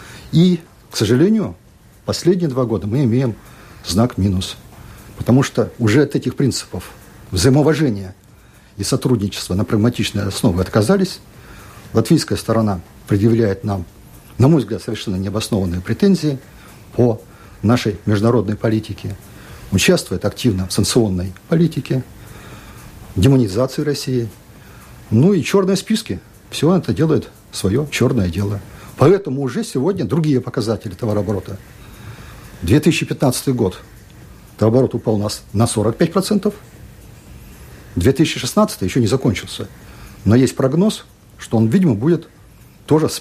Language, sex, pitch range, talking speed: Russian, male, 105-140 Hz, 110 wpm